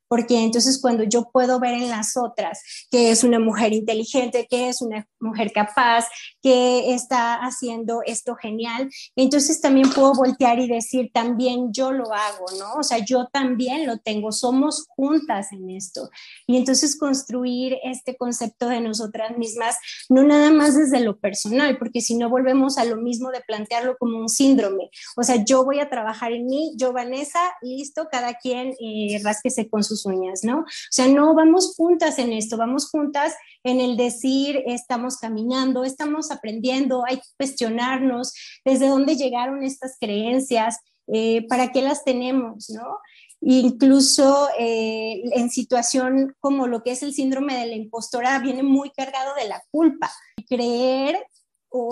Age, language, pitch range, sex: 20-39, Spanish, 235-270 Hz, female